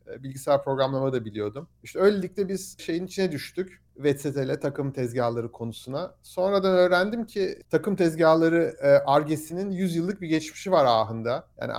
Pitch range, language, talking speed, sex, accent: 140-175 Hz, Turkish, 145 wpm, male, native